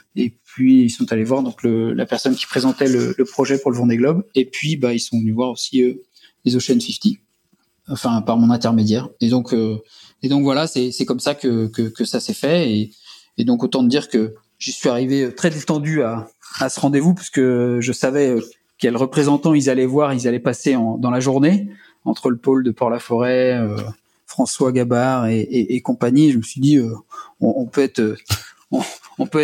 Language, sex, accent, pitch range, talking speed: French, male, French, 120-145 Hz, 215 wpm